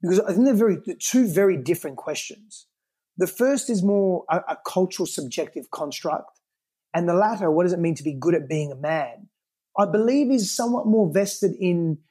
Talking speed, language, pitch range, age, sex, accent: 200 wpm, English, 150-190 Hz, 30-49, male, Australian